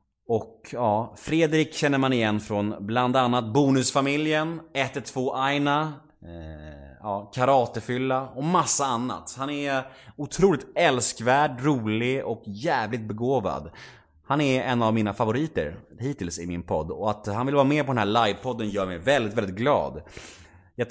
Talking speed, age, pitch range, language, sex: 150 wpm, 30-49, 110-155 Hz, Swedish, male